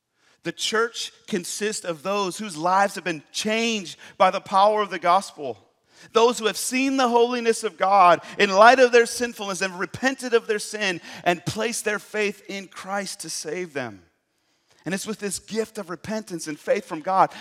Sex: male